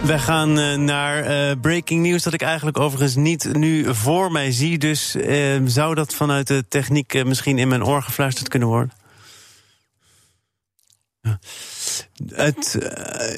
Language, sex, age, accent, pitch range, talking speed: Dutch, male, 40-59, Dutch, 120-150 Hz, 125 wpm